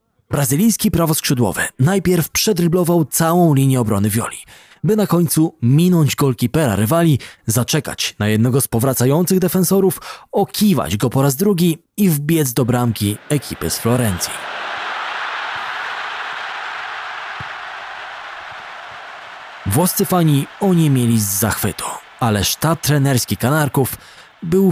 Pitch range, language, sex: 115-170 Hz, Polish, male